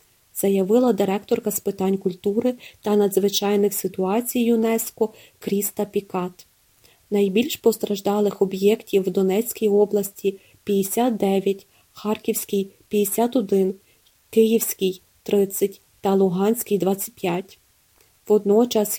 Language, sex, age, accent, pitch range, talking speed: Ukrainian, female, 30-49, native, 195-225 Hz, 95 wpm